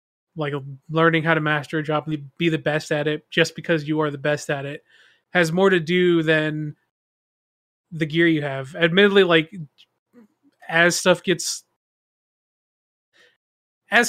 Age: 20-39